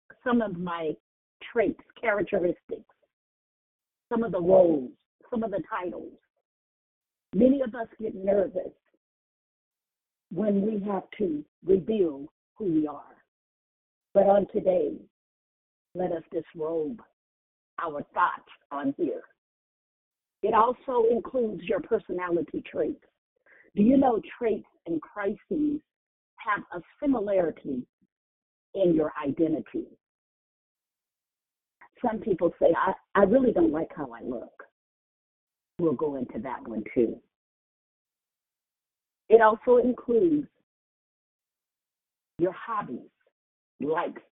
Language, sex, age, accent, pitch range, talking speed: English, female, 50-69, American, 180-265 Hz, 105 wpm